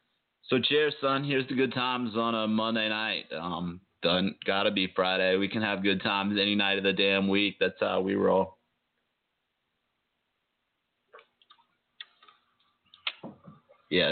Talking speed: 135 wpm